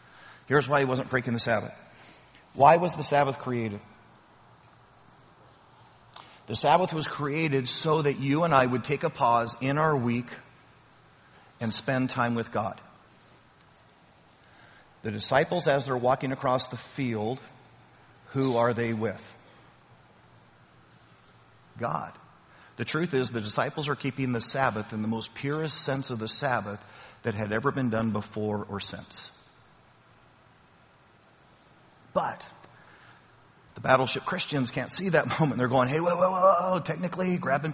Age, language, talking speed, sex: 40-59, English, 140 wpm, male